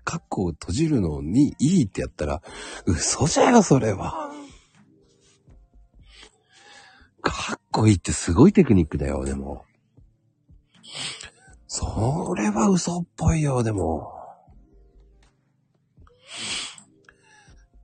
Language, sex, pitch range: Japanese, male, 75-115 Hz